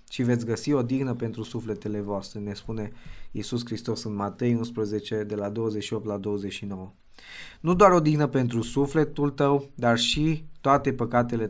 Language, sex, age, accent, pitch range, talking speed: Romanian, male, 20-39, native, 110-130 Hz, 160 wpm